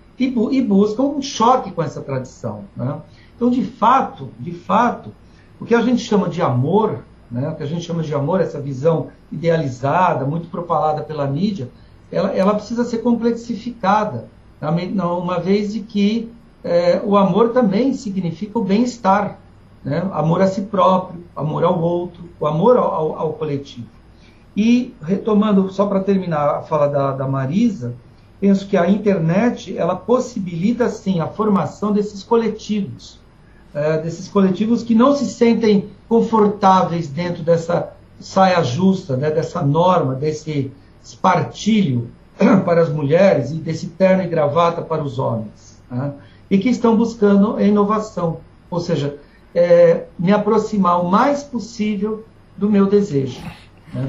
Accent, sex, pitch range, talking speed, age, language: Brazilian, male, 155-215 Hz, 150 wpm, 60-79, Portuguese